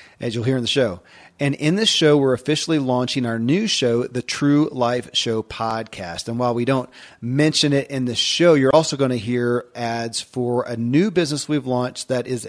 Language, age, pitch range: English, 40-59, 115-150 Hz